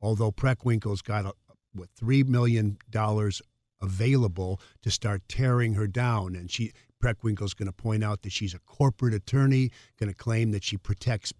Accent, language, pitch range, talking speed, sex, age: American, English, 95-115 Hz, 165 wpm, male, 50-69